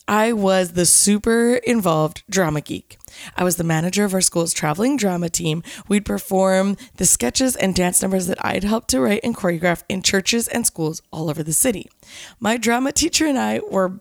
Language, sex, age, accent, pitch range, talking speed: English, female, 20-39, American, 180-240 Hz, 195 wpm